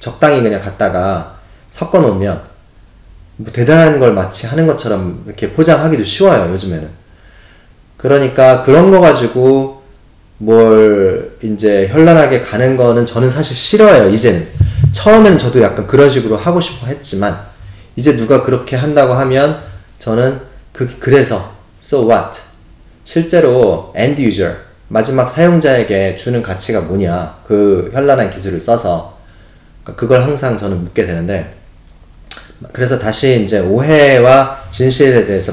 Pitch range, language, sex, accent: 95-130 Hz, Korean, male, native